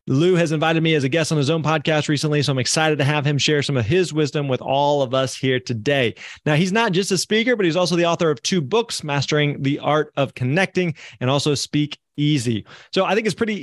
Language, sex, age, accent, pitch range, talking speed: English, male, 20-39, American, 140-180 Hz, 250 wpm